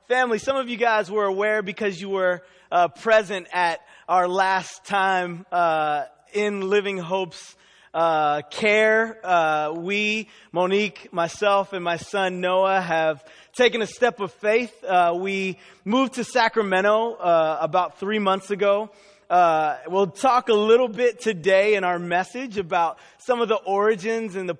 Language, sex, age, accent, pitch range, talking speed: English, male, 20-39, American, 180-210 Hz, 155 wpm